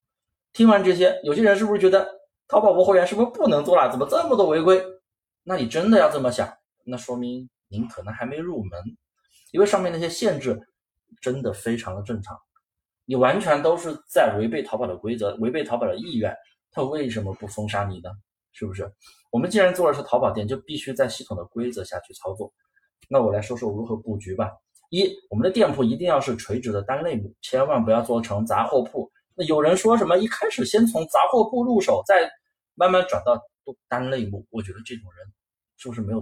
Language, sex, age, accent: Chinese, male, 20-39, native